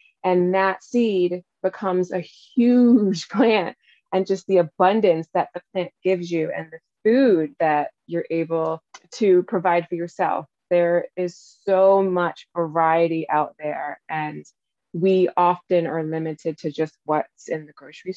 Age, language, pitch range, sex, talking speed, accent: 20-39, English, 160-185 Hz, female, 145 wpm, American